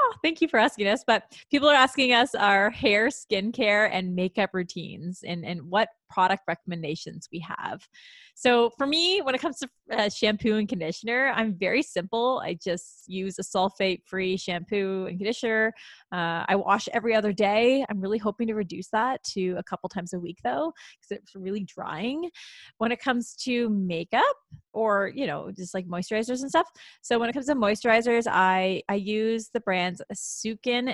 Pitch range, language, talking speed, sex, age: 190-240 Hz, English, 180 wpm, female, 20-39